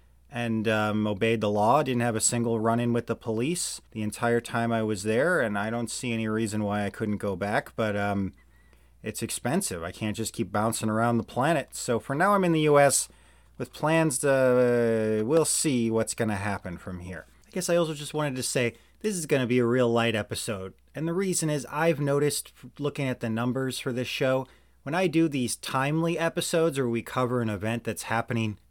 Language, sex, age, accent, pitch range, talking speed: English, male, 30-49, American, 110-140 Hz, 215 wpm